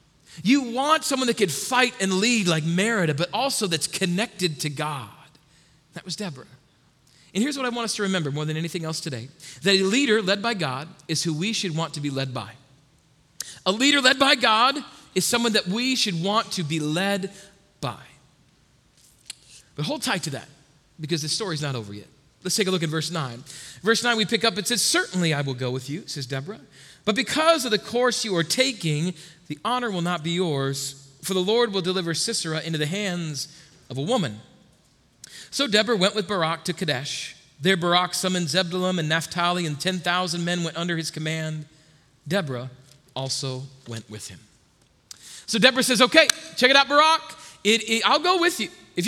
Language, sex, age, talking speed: English, male, 40-59, 195 wpm